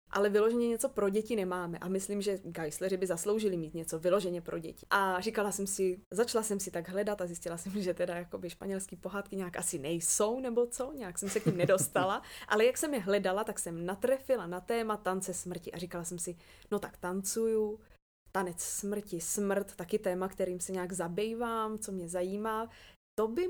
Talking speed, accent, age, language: 195 wpm, native, 20-39, Czech